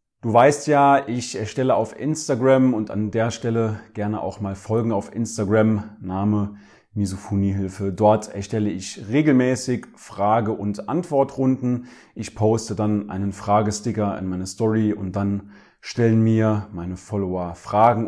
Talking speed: 135 wpm